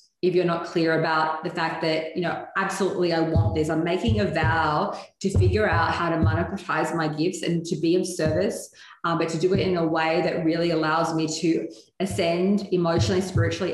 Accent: Australian